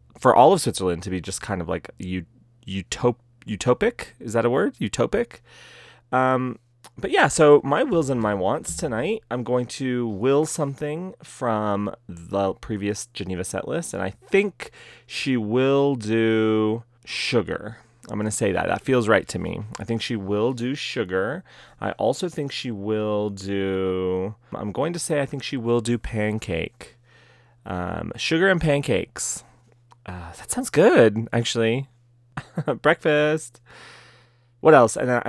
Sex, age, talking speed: male, 30-49, 155 wpm